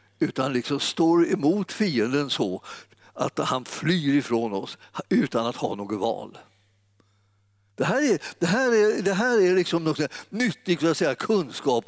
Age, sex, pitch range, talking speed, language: 60-79, male, 100-165 Hz, 145 wpm, Swedish